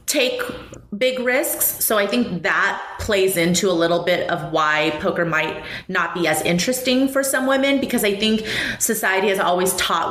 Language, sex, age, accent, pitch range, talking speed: English, female, 30-49, American, 175-220 Hz, 180 wpm